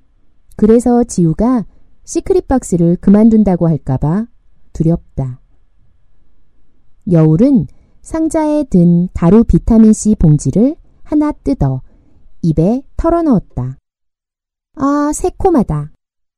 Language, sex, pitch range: Korean, female, 170-265 Hz